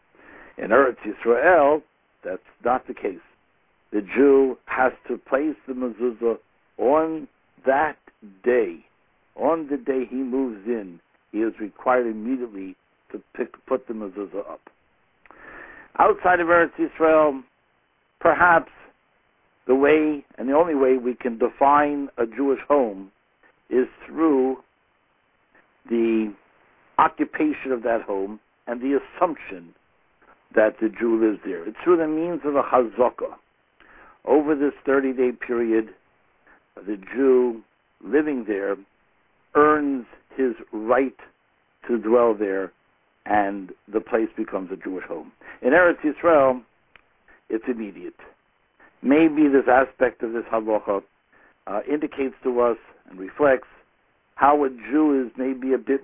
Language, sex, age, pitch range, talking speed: English, male, 60-79, 110-145 Hz, 125 wpm